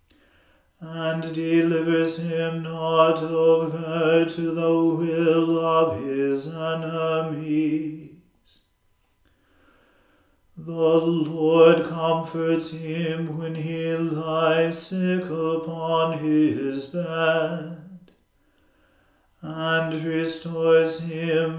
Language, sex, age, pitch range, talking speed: English, male, 40-59, 160-165 Hz, 70 wpm